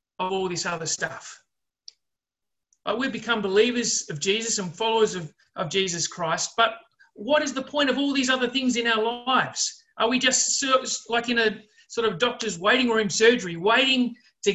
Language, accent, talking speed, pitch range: English, Australian, 180 wpm, 180-245 Hz